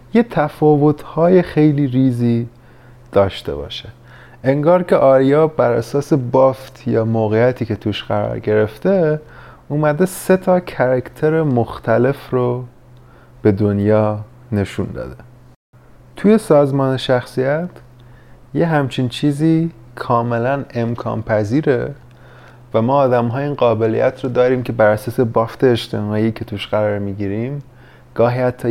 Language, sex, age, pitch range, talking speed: Persian, male, 30-49, 105-130 Hz, 120 wpm